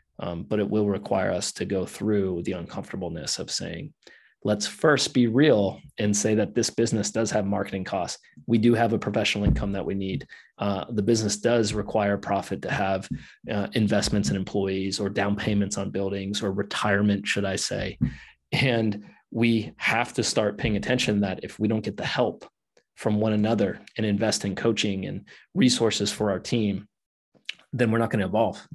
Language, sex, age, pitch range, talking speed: English, male, 30-49, 100-115 Hz, 185 wpm